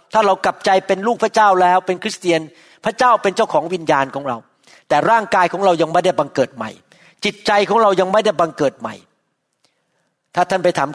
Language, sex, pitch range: Thai, male, 175-225 Hz